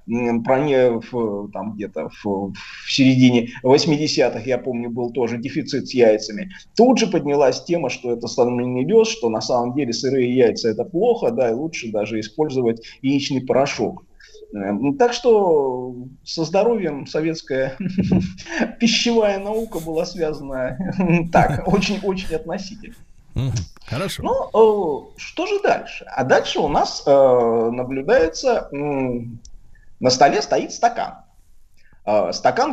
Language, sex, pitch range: Russian, male, 115-170 Hz